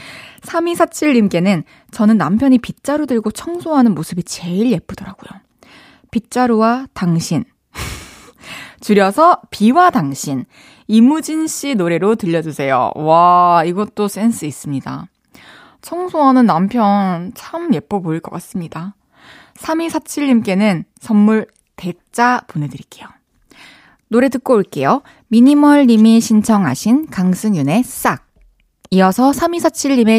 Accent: native